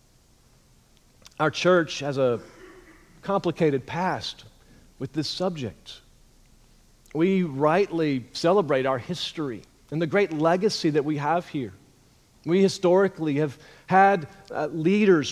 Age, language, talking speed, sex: 40-59, English, 105 wpm, male